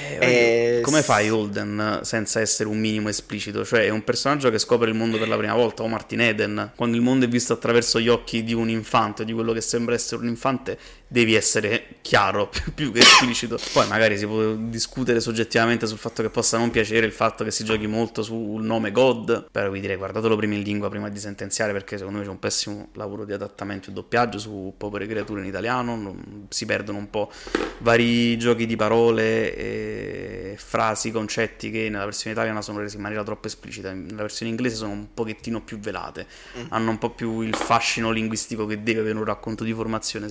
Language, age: Italian, 20-39